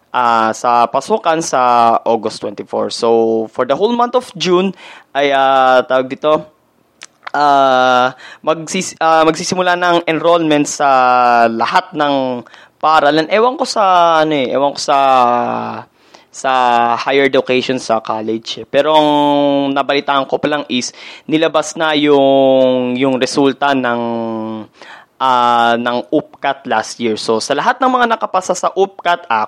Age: 20-39